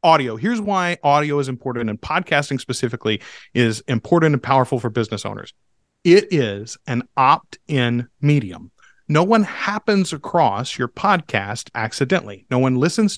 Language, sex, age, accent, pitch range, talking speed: English, male, 40-59, American, 125-190 Hz, 140 wpm